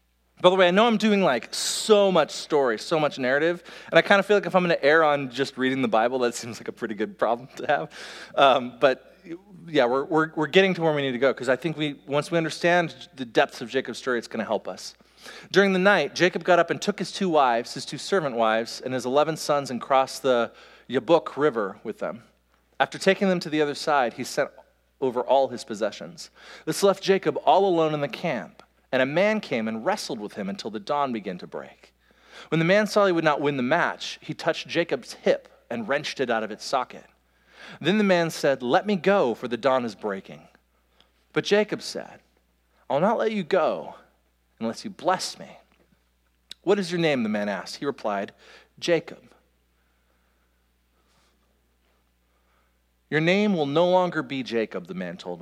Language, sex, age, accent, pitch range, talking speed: English, male, 40-59, American, 110-175 Hz, 210 wpm